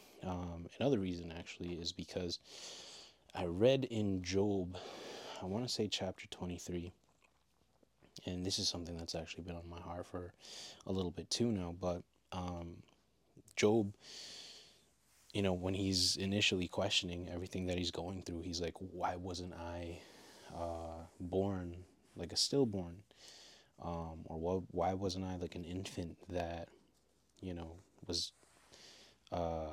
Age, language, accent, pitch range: 20-39, English, American, 85-95 Hz